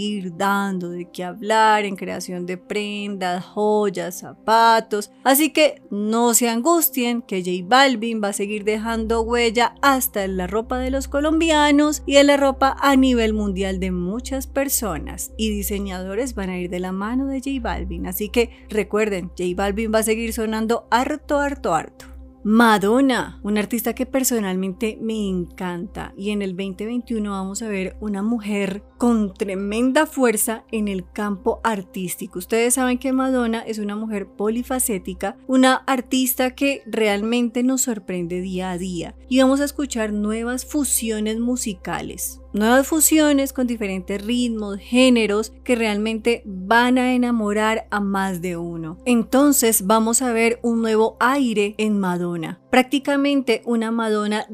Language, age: Spanish, 30-49